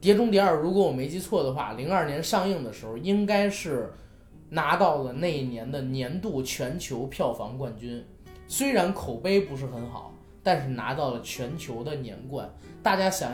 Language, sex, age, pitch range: Chinese, male, 20-39, 125-185 Hz